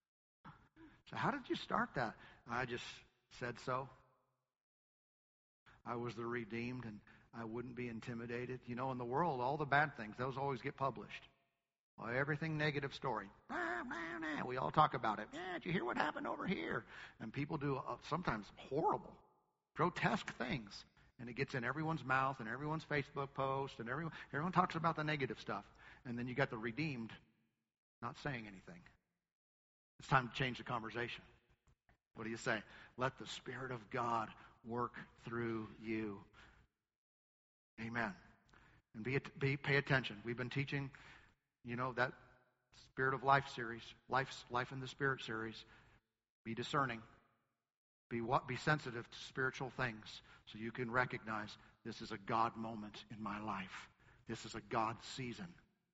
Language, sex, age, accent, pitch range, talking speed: English, male, 50-69, American, 115-135 Hz, 165 wpm